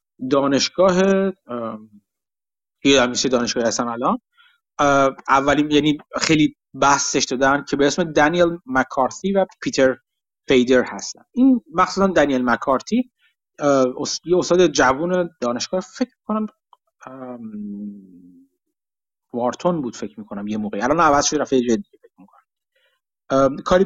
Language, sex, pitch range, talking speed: Persian, male, 120-195 Hz, 105 wpm